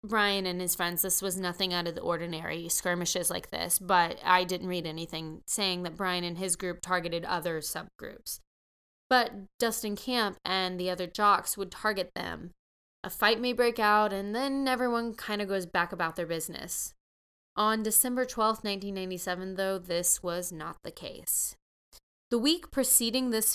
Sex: female